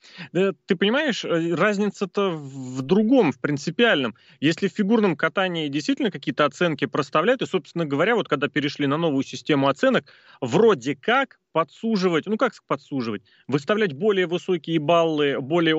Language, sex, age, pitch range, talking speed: Russian, male, 30-49, 150-200 Hz, 135 wpm